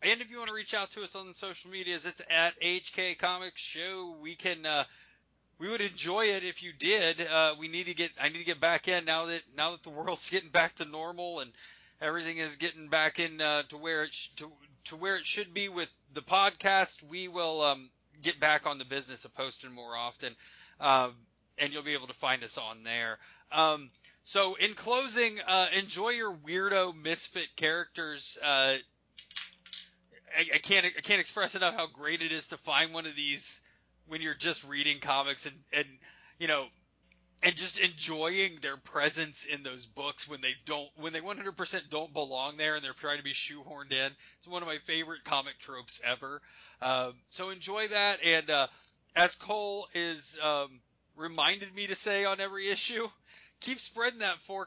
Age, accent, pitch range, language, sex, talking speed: 20-39, American, 145-185 Hz, English, male, 200 wpm